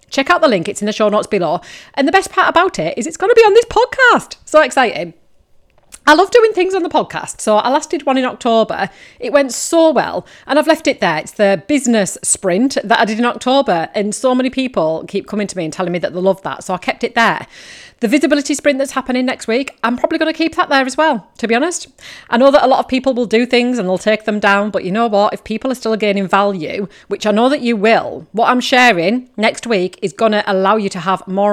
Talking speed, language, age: 270 wpm, English, 40-59